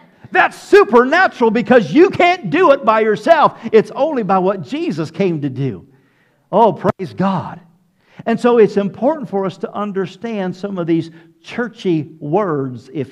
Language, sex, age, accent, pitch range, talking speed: English, male, 50-69, American, 150-200 Hz, 155 wpm